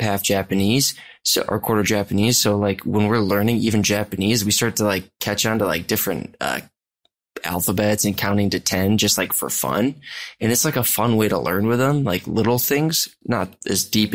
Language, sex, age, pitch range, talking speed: English, male, 20-39, 95-110 Hz, 205 wpm